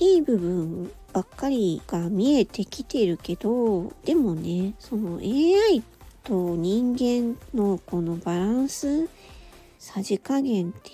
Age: 40-59